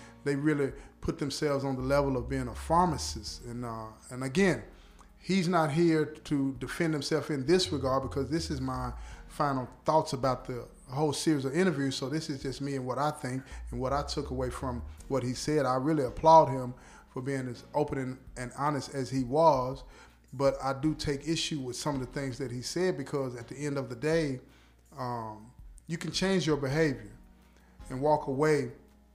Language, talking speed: English, 200 wpm